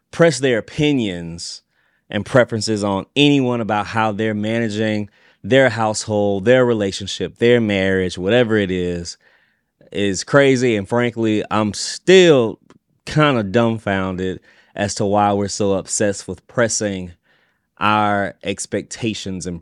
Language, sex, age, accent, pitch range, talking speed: English, male, 20-39, American, 95-115 Hz, 120 wpm